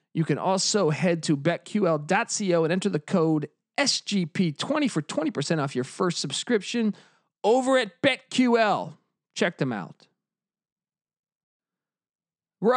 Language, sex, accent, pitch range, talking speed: English, male, American, 155-220 Hz, 115 wpm